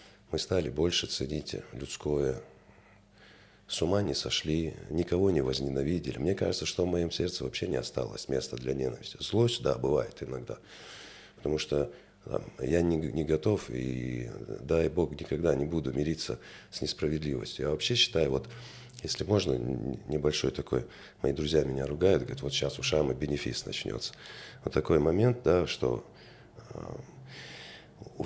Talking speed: 145 wpm